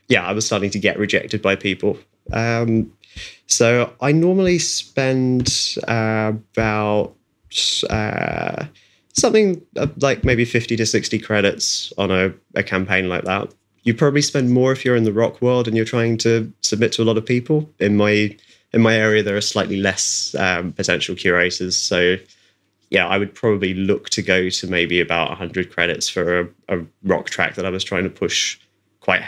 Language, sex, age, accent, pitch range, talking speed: English, male, 20-39, British, 95-115 Hz, 180 wpm